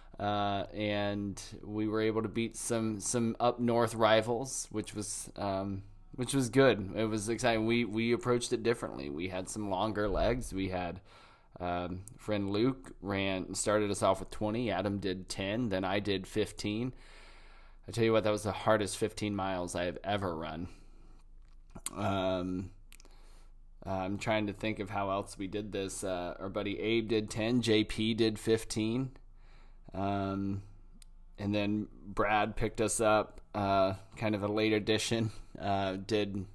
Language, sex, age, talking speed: English, male, 20-39, 165 wpm